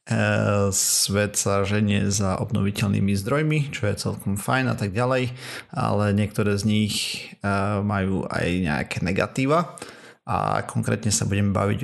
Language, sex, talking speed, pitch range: Slovak, male, 120 wpm, 100-115 Hz